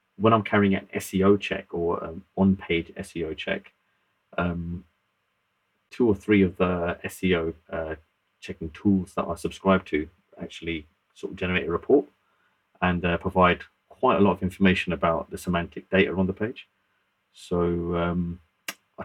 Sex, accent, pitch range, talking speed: male, British, 80-95 Hz, 150 wpm